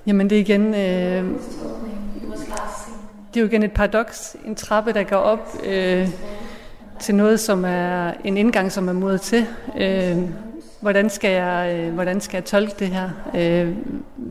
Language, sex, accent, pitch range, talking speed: Danish, female, native, 180-210 Hz, 155 wpm